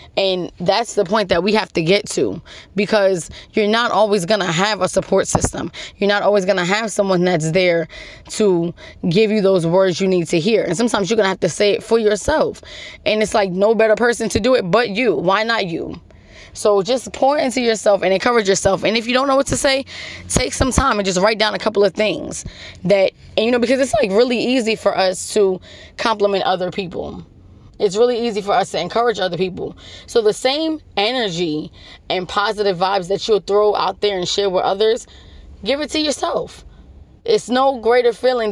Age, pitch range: 20-39, 190-235 Hz